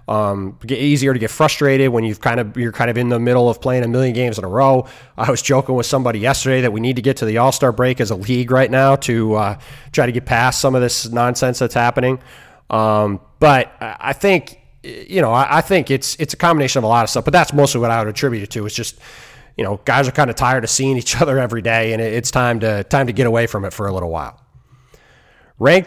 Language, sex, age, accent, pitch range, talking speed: English, male, 30-49, American, 115-135 Hz, 260 wpm